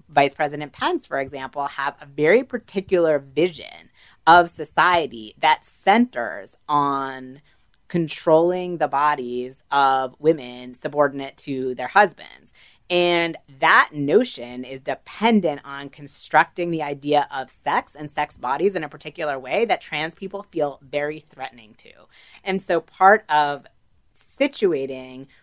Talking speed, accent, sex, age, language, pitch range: 125 wpm, American, female, 30-49, English, 135-170 Hz